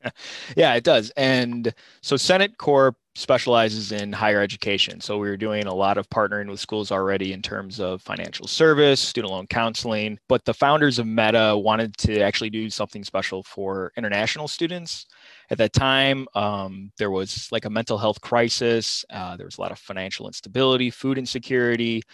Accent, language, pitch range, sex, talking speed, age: American, English, 100-125 Hz, male, 175 wpm, 20-39